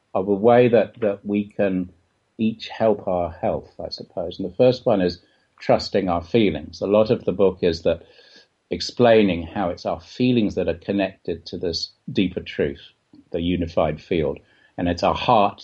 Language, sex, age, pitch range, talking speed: English, male, 50-69, 90-115 Hz, 180 wpm